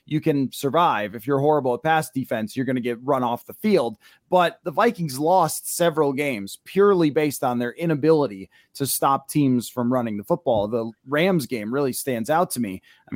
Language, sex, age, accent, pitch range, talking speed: English, male, 30-49, American, 130-160 Hz, 200 wpm